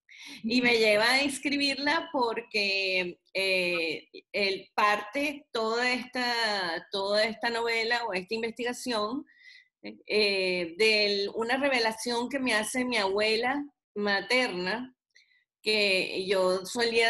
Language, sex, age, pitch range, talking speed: Spanish, female, 30-49, 195-245 Hz, 105 wpm